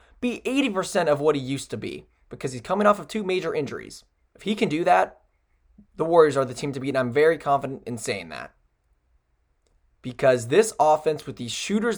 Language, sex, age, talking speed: English, male, 20-39, 195 wpm